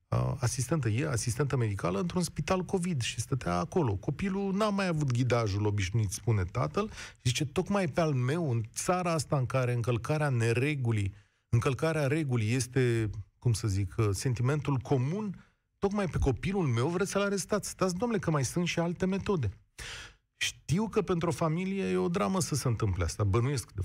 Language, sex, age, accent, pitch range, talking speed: Romanian, male, 40-59, native, 120-175 Hz, 170 wpm